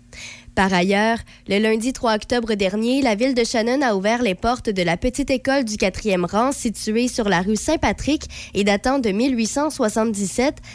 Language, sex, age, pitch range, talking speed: French, female, 20-39, 190-245 Hz, 175 wpm